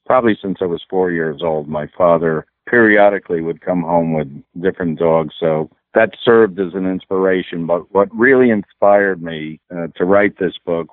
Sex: male